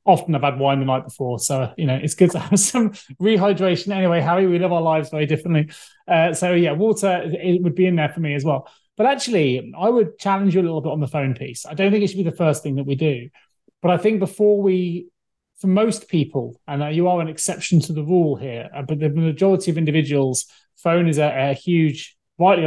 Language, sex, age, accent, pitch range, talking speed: English, male, 30-49, British, 145-175 Hz, 245 wpm